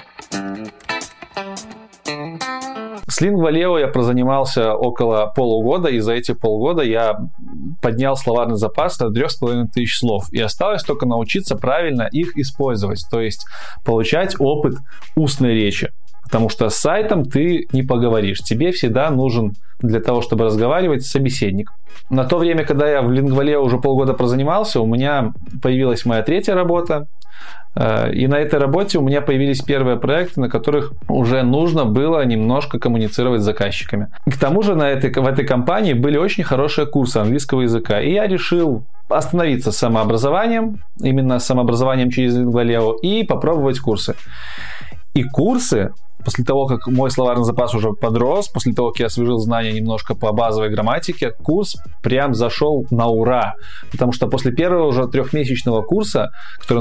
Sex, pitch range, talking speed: male, 115-145 Hz, 145 wpm